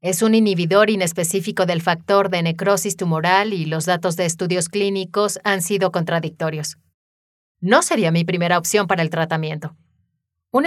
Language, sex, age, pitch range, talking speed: Spanish, female, 30-49, 165-205 Hz, 150 wpm